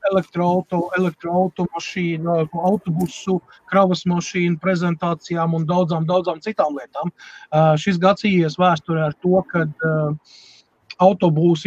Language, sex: English, male